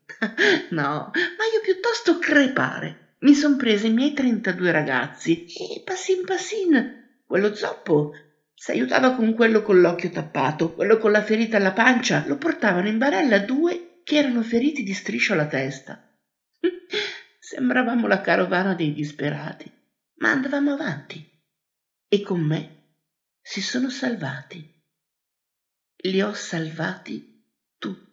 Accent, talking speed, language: native, 125 wpm, Italian